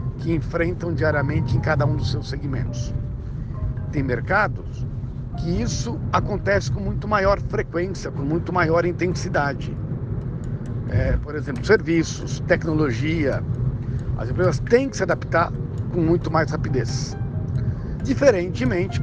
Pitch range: 120-150 Hz